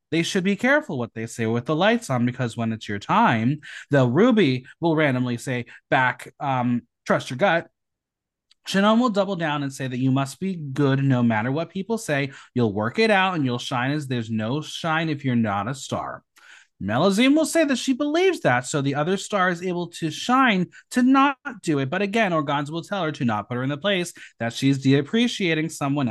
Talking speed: 215 wpm